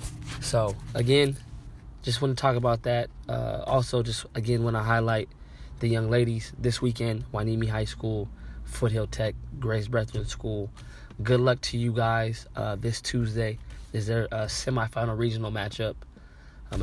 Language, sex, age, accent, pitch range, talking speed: English, male, 20-39, American, 110-125 Hz, 155 wpm